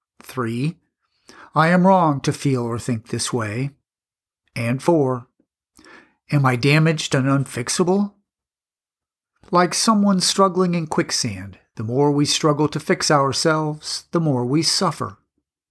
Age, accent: 50-69, American